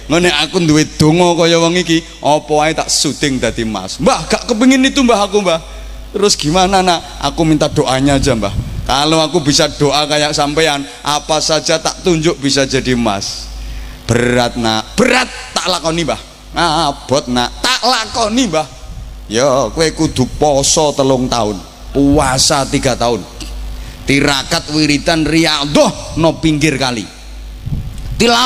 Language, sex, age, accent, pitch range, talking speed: Indonesian, male, 30-49, native, 140-235 Hz, 140 wpm